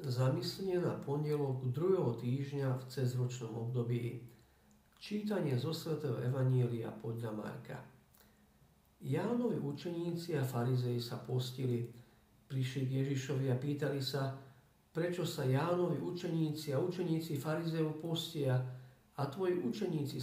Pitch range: 125-165 Hz